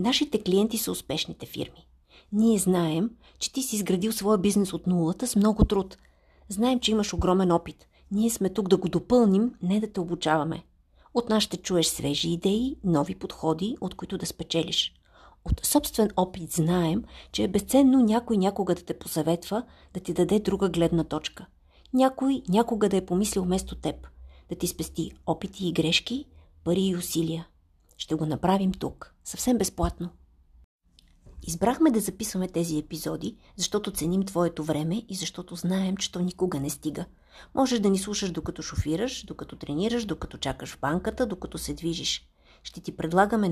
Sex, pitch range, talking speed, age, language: female, 160-210 Hz, 165 wpm, 40-59, Bulgarian